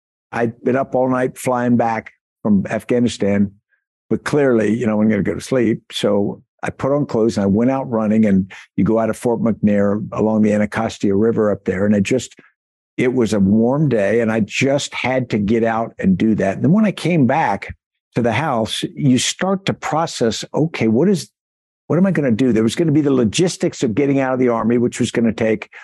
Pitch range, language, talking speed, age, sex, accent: 105-130 Hz, English, 230 wpm, 60-79, male, American